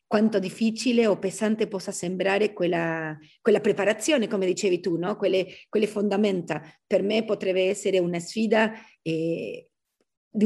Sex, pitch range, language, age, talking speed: female, 180-220 Hz, Italian, 40-59, 140 wpm